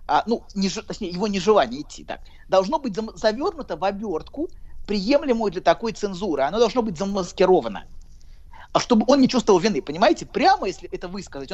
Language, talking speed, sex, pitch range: Russian, 165 wpm, male, 180-245 Hz